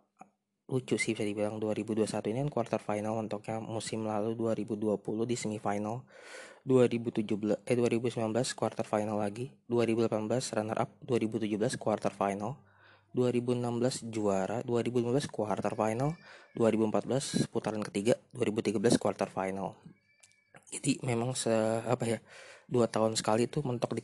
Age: 20-39